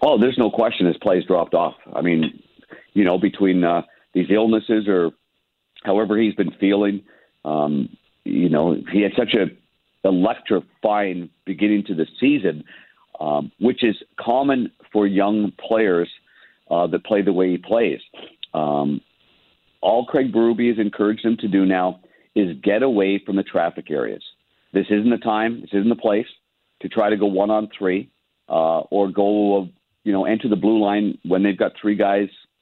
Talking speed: 170 wpm